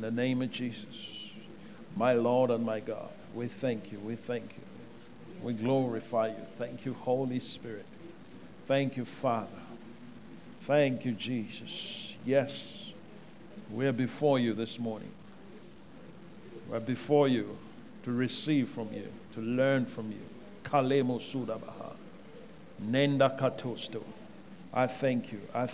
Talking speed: 125 wpm